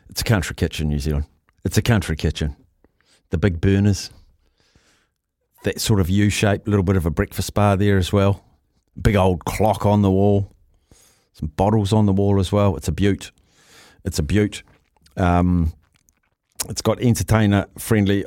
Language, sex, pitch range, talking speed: English, male, 95-120 Hz, 165 wpm